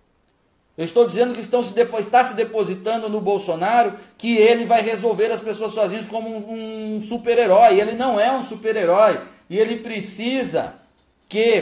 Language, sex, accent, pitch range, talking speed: Portuguese, male, Brazilian, 205-240 Hz, 150 wpm